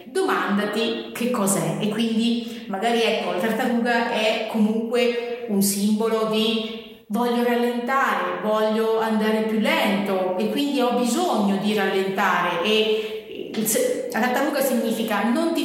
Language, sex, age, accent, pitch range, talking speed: Italian, female, 30-49, native, 205-240 Hz, 125 wpm